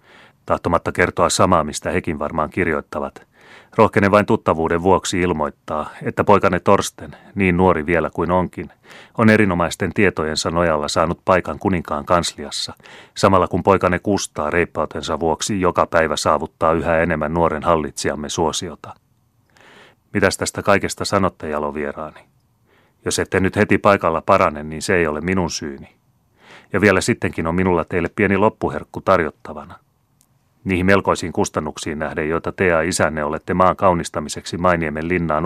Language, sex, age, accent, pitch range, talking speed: Finnish, male, 30-49, native, 80-100 Hz, 140 wpm